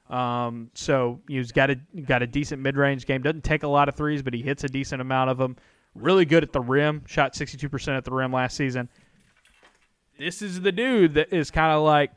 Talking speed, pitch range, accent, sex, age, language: 220 wpm, 130-155 Hz, American, male, 30-49, English